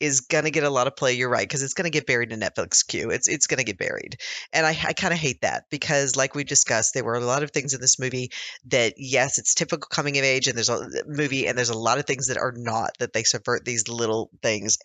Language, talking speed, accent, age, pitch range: English, 285 wpm, American, 40-59, 130-160 Hz